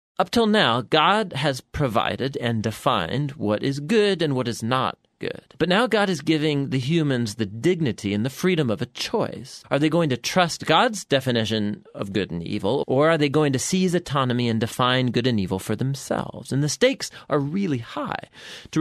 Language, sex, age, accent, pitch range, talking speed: English, male, 30-49, American, 115-170 Hz, 200 wpm